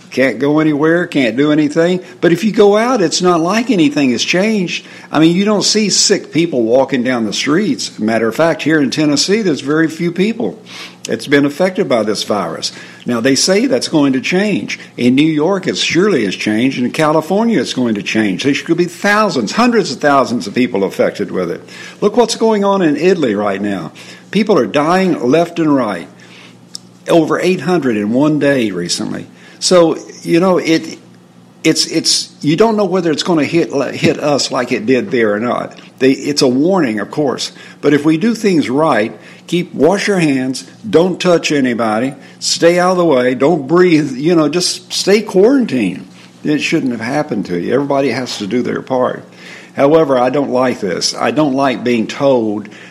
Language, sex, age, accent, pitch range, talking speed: English, male, 50-69, American, 135-185 Hz, 195 wpm